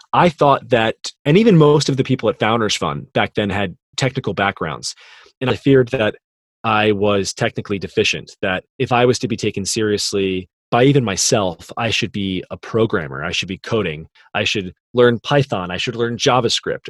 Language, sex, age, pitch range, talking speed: English, male, 20-39, 100-125 Hz, 190 wpm